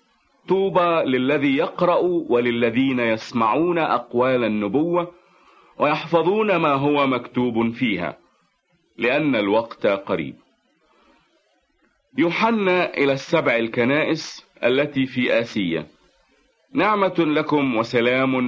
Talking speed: 80 wpm